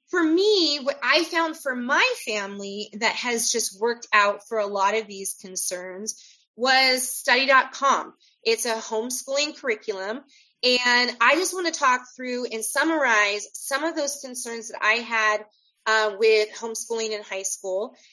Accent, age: American, 30-49